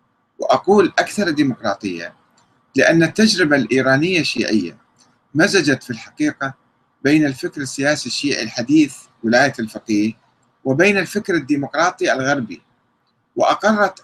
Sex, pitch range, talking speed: male, 125-160 Hz, 95 wpm